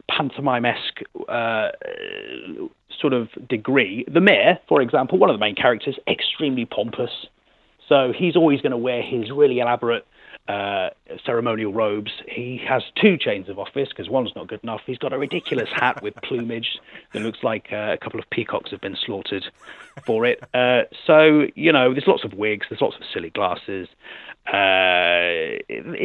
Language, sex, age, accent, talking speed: English, male, 30-49, British, 170 wpm